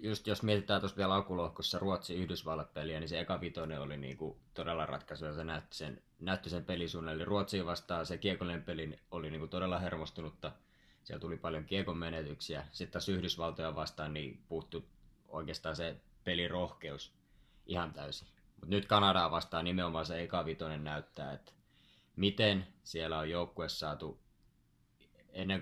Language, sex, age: Finnish, male, 20-39